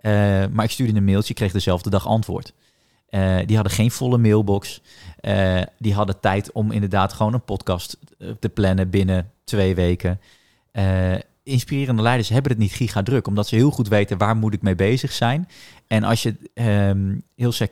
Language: Dutch